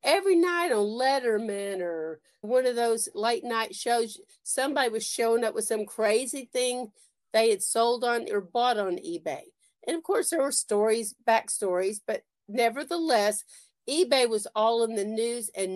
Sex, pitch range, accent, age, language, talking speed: female, 210-260 Hz, American, 50-69, English, 165 wpm